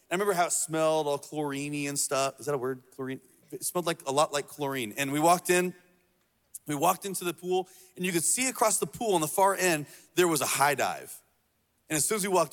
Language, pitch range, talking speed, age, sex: English, 145-180 Hz, 250 wpm, 30-49, male